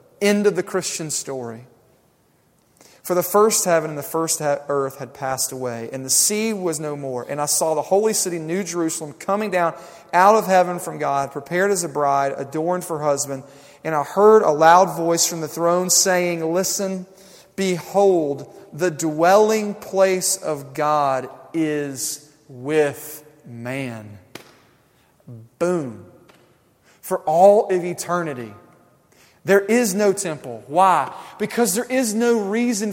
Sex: male